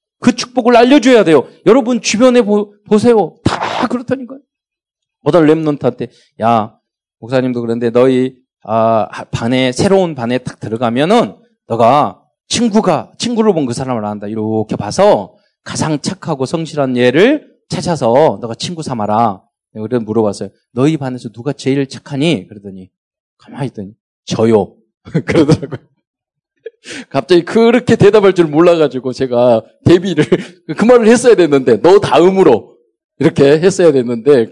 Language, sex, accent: Korean, male, native